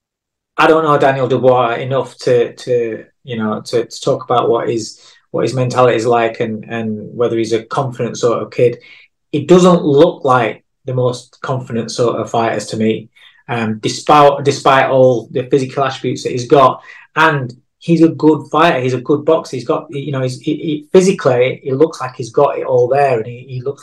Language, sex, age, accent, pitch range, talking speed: English, male, 20-39, British, 125-145 Hz, 205 wpm